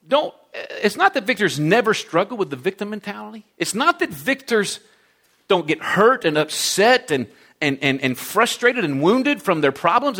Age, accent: 40-59, American